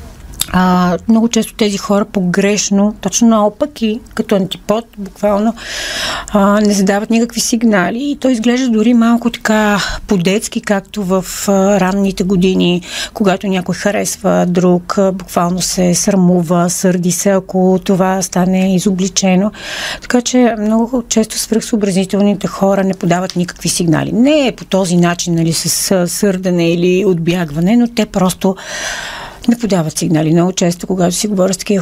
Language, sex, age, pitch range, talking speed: Bulgarian, female, 40-59, 180-215 Hz, 140 wpm